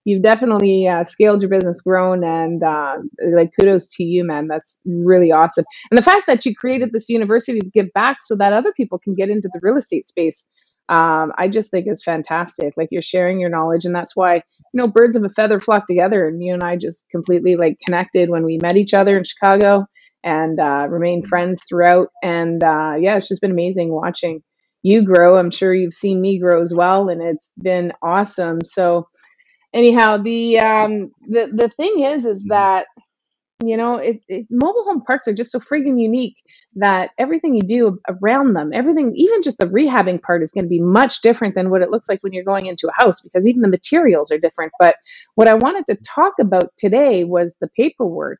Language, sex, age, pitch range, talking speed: English, female, 30-49, 175-245 Hz, 210 wpm